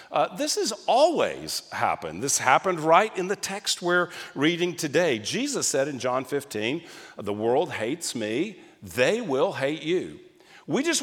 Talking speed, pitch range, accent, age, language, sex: 160 wpm, 140-210 Hz, American, 50-69, English, male